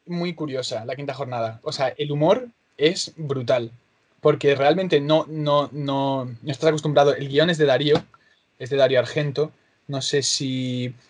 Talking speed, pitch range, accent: 170 wpm, 135-155 Hz, Spanish